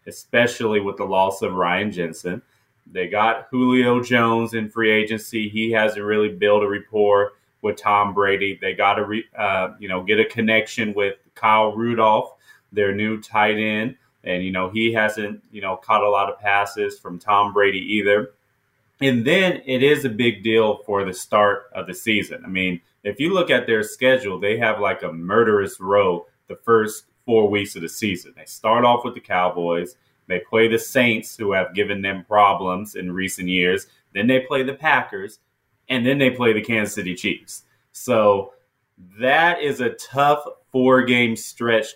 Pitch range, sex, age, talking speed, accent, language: 100-120 Hz, male, 30-49, 185 wpm, American, English